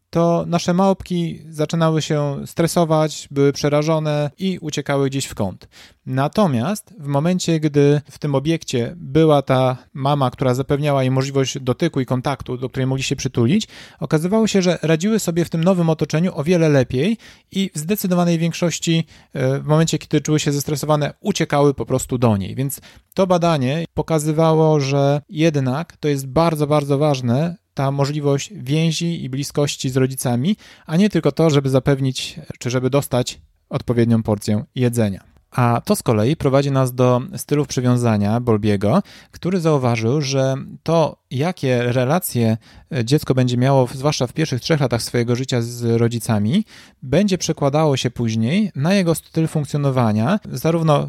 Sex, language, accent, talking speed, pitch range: male, Polish, native, 150 wpm, 130-160 Hz